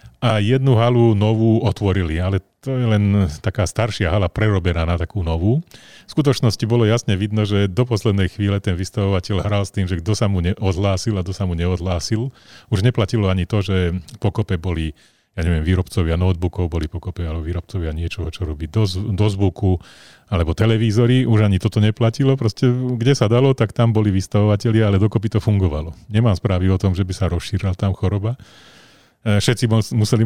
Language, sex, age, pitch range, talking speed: Slovak, male, 40-59, 95-115 Hz, 180 wpm